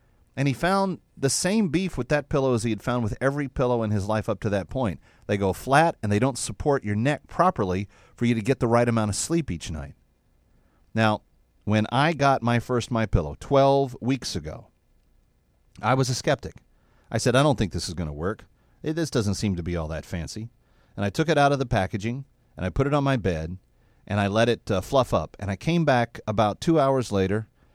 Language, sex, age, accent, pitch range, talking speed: English, male, 40-59, American, 105-135 Hz, 235 wpm